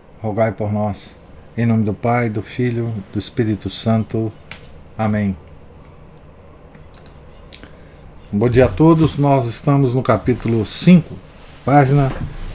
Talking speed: 110 wpm